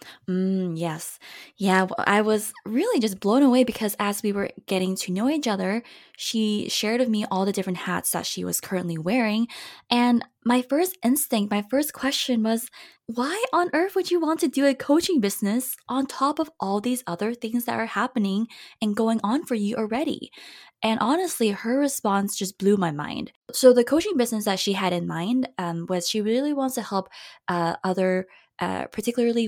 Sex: female